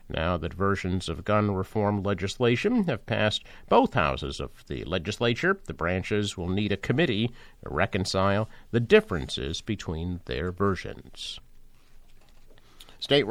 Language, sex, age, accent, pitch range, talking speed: English, male, 50-69, American, 95-130 Hz, 125 wpm